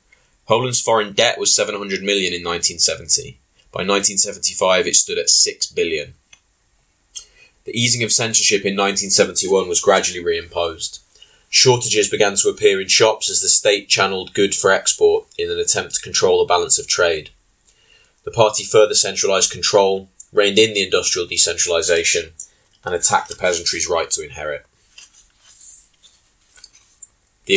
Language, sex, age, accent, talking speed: English, male, 20-39, British, 140 wpm